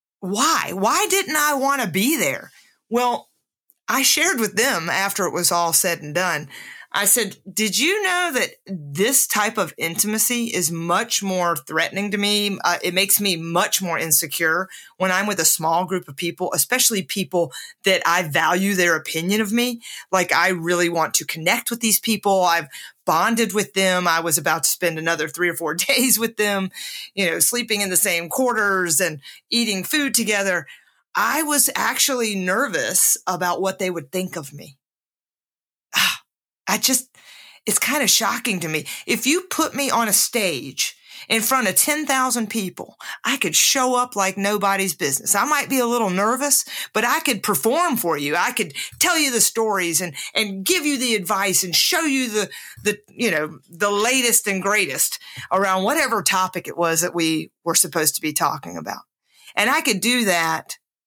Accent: American